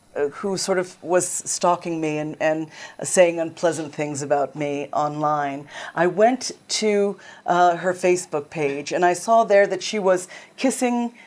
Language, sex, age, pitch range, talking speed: English, female, 40-59, 165-205 Hz, 155 wpm